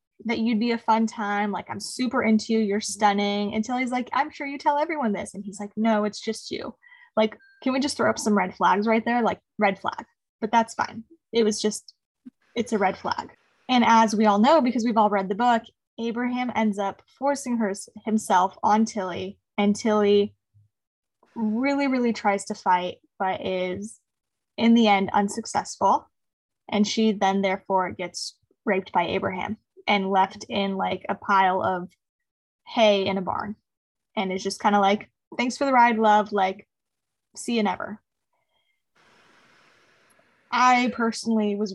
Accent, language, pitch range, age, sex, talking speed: American, English, 200-240 Hz, 10-29, female, 175 wpm